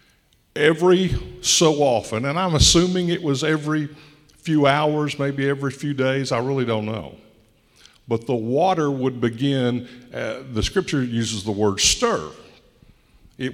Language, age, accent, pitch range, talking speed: English, 60-79, American, 120-155 Hz, 140 wpm